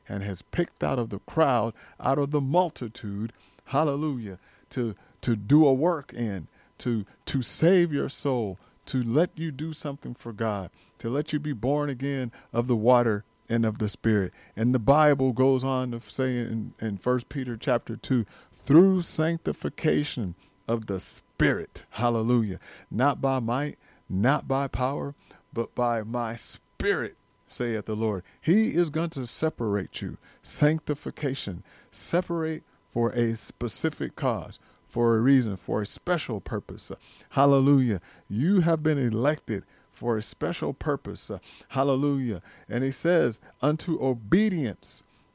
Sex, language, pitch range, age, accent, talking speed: male, English, 110-145 Hz, 40-59, American, 145 wpm